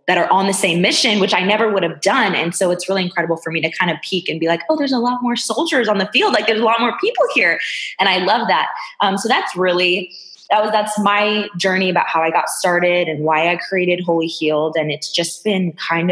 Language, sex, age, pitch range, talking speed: English, female, 20-39, 150-190 Hz, 265 wpm